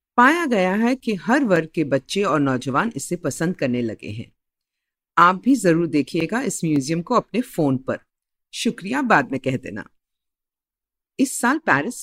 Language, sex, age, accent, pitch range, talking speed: Hindi, female, 50-69, native, 150-235 Hz, 165 wpm